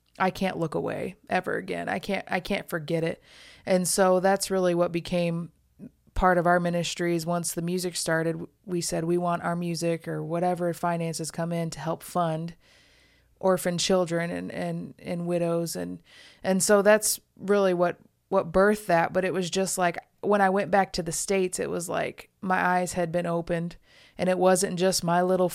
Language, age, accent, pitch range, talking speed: English, 20-39, American, 170-185 Hz, 190 wpm